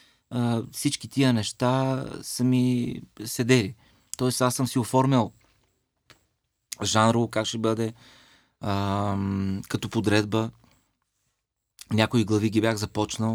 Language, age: Bulgarian, 30-49